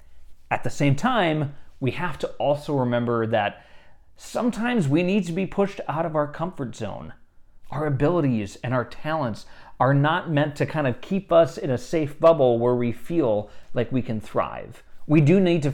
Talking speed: 185 wpm